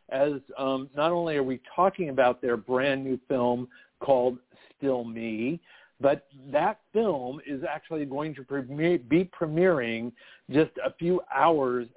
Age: 50-69